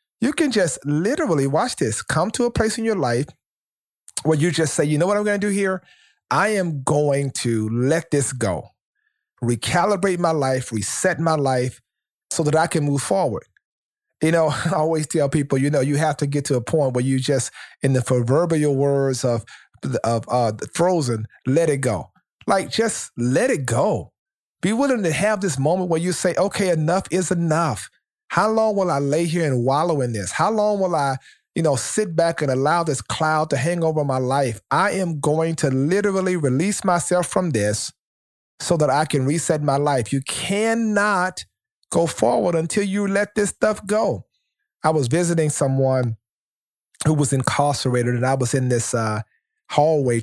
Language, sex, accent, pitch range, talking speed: English, male, American, 130-180 Hz, 190 wpm